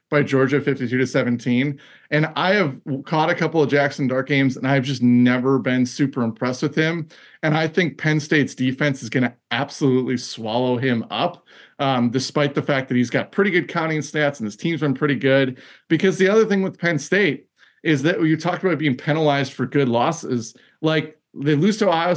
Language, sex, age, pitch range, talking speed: English, male, 30-49, 130-165 Hz, 205 wpm